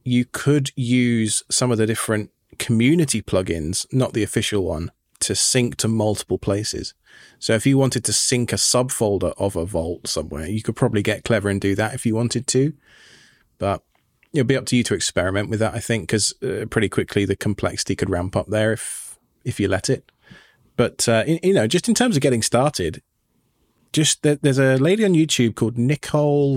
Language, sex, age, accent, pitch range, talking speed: English, male, 20-39, British, 110-130 Hz, 200 wpm